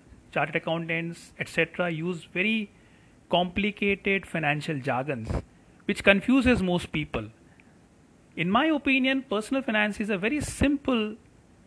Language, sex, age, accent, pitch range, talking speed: English, male, 30-49, Indian, 160-225 Hz, 110 wpm